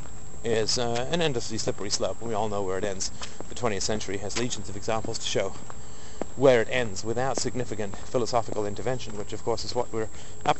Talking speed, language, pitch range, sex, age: 200 wpm, English, 105-125 Hz, male, 40-59